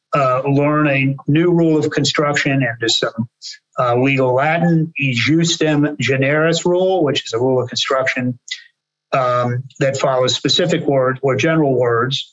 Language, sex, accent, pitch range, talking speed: English, male, American, 125-150 Hz, 150 wpm